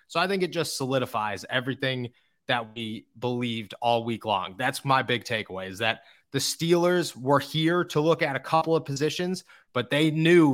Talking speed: 190 wpm